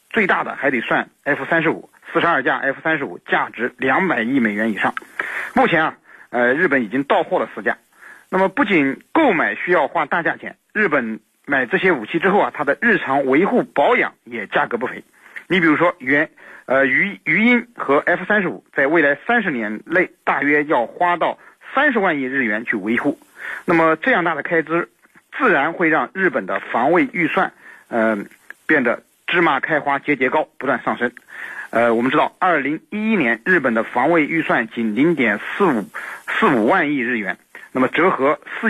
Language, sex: Chinese, male